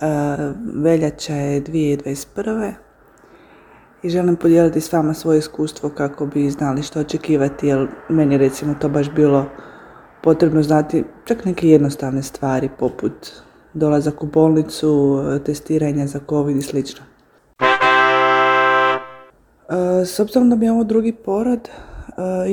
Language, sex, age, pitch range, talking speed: Croatian, female, 20-39, 145-170 Hz, 125 wpm